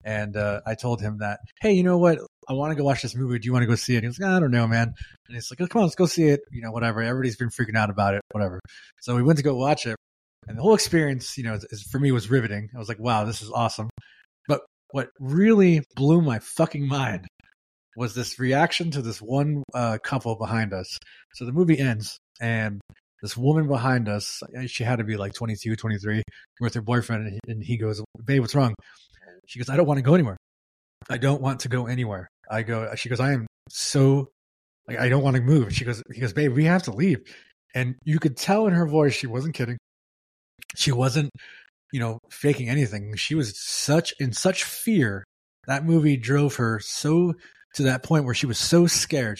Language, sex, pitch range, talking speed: English, male, 110-145 Hz, 235 wpm